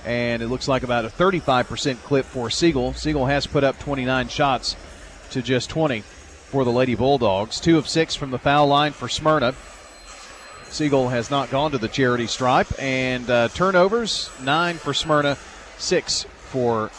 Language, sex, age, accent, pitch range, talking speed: English, male, 40-59, American, 125-155 Hz, 170 wpm